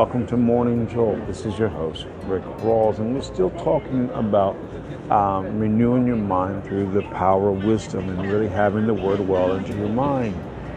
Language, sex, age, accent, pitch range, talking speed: English, male, 50-69, American, 95-115 Hz, 185 wpm